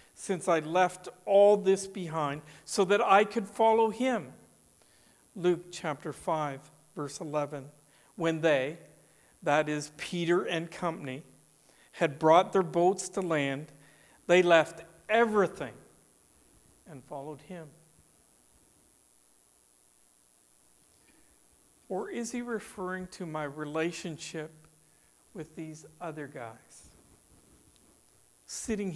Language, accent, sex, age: English, American, male, 50-69